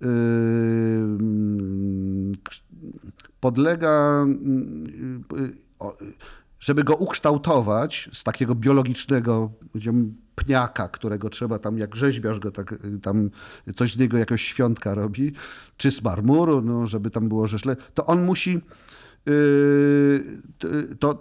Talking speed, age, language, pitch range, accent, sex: 100 wpm, 40-59, Polish, 110-140 Hz, native, male